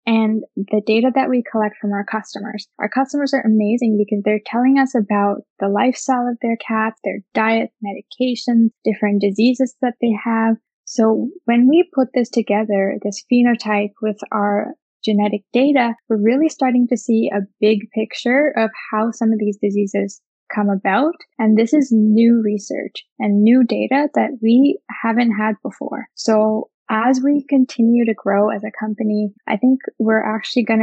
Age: 10-29